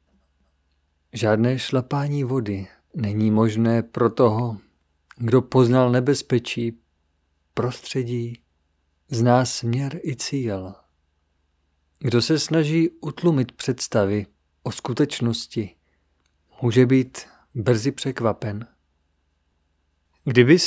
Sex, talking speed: male, 80 wpm